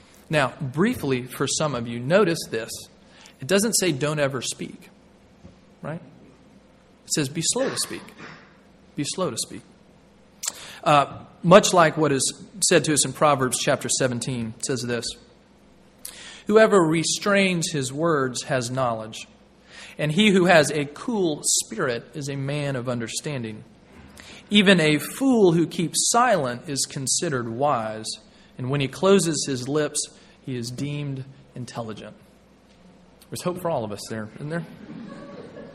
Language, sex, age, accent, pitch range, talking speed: English, male, 40-59, American, 130-170 Hz, 145 wpm